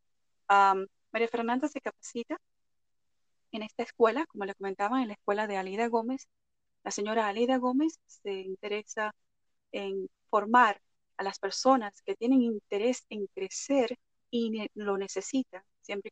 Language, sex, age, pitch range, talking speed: Spanish, female, 30-49, 195-255 Hz, 140 wpm